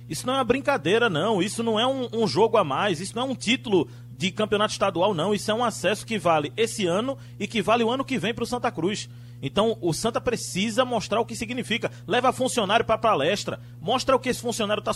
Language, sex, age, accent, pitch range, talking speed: Portuguese, male, 30-49, Brazilian, 135-225 Hz, 245 wpm